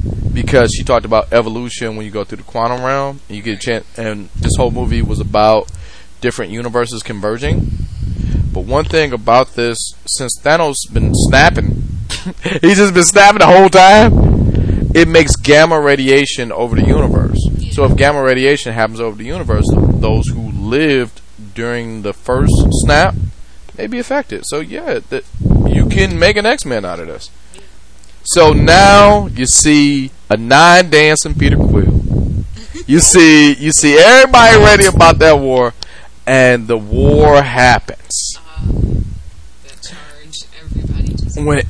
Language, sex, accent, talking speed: English, male, American, 145 wpm